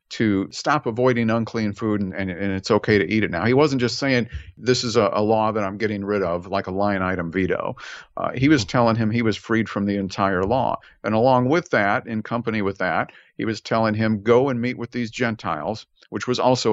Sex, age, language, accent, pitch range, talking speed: male, 50-69, English, American, 105-125 Hz, 235 wpm